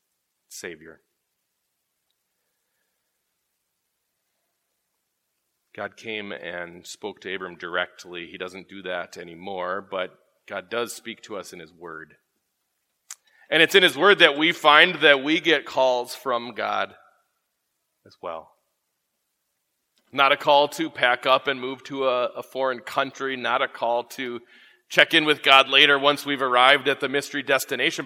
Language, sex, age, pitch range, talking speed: English, male, 40-59, 130-170 Hz, 145 wpm